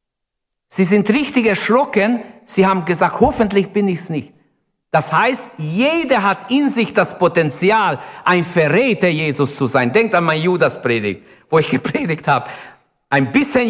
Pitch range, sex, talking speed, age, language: 135-200 Hz, male, 155 wpm, 60-79, German